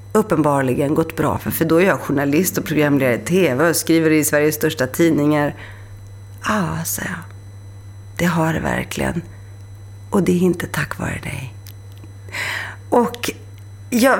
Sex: female